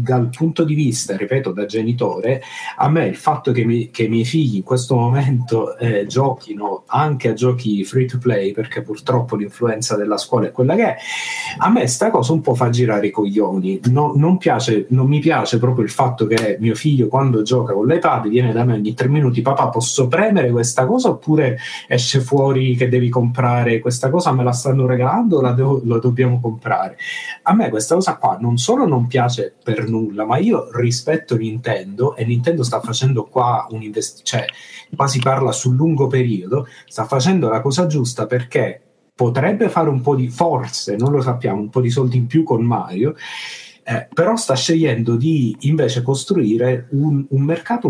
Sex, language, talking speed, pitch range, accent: male, Italian, 190 wpm, 115-140 Hz, native